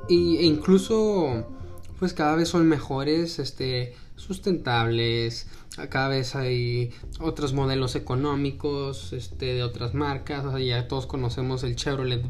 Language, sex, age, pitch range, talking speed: Spanish, male, 20-39, 115-140 Hz, 130 wpm